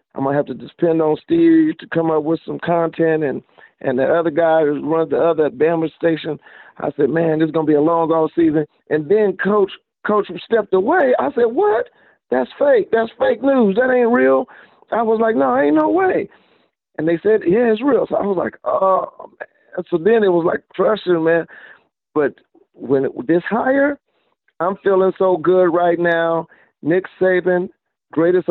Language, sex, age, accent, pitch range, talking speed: English, male, 50-69, American, 160-200 Hz, 200 wpm